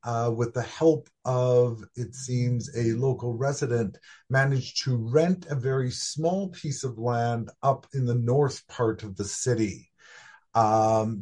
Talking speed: 150 wpm